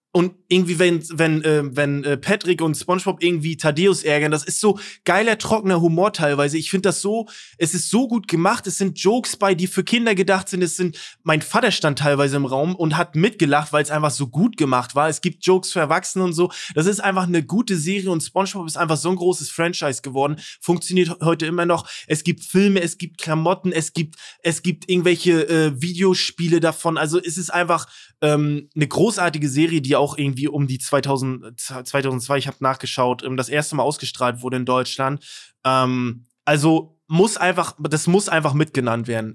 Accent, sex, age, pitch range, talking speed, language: German, male, 20-39, 150-180 Hz, 190 wpm, German